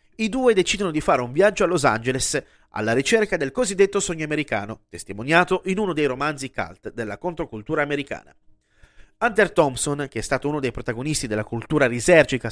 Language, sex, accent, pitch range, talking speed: Italian, male, native, 125-180 Hz, 175 wpm